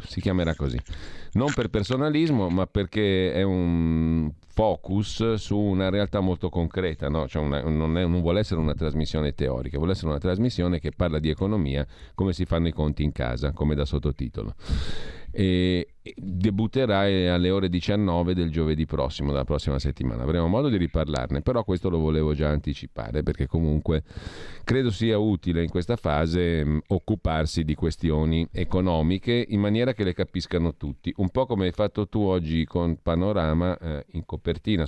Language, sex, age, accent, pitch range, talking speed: Italian, male, 40-59, native, 75-100 Hz, 155 wpm